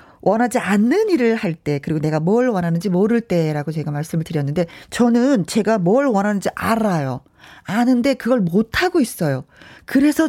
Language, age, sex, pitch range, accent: Korean, 40-59, female, 180-245 Hz, native